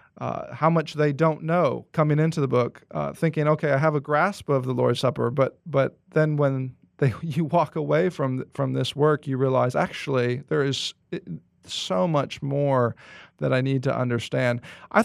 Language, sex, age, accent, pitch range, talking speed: English, male, 40-59, American, 130-160 Hz, 185 wpm